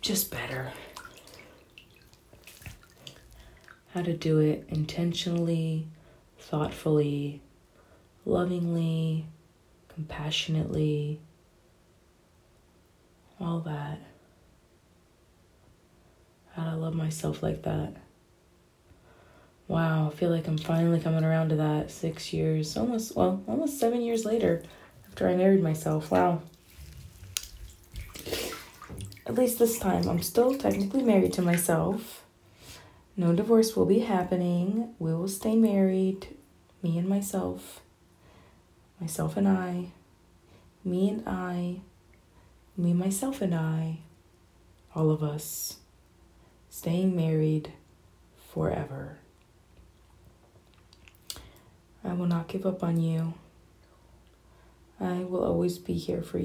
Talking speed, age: 100 wpm, 20-39